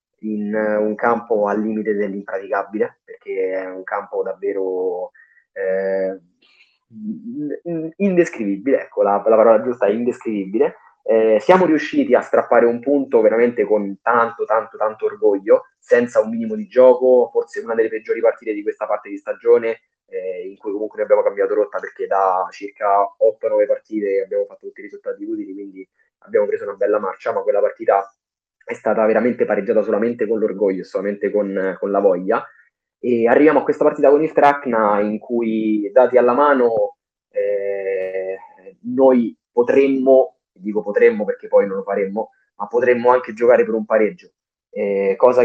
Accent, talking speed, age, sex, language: native, 160 wpm, 20-39, male, Italian